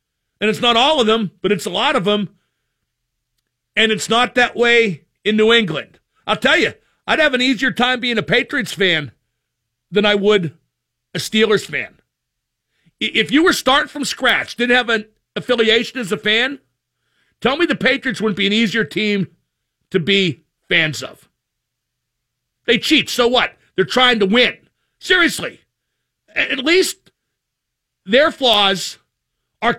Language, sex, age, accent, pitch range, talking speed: English, male, 50-69, American, 185-245 Hz, 155 wpm